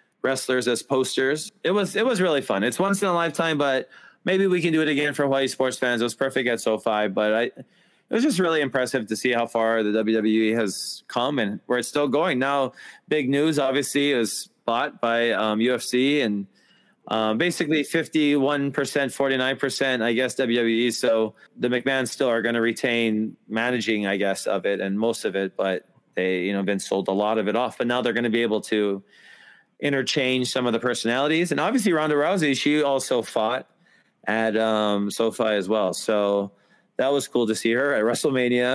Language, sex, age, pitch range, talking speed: English, male, 20-39, 110-140 Hz, 205 wpm